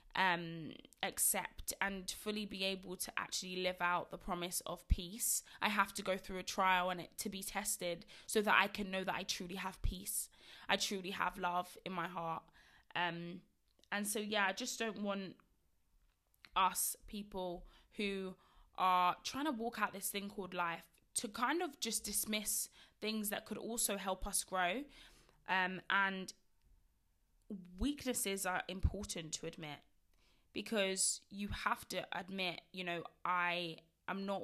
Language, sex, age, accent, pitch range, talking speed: English, female, 20-39, British, 175-205 Hz, 160 wpm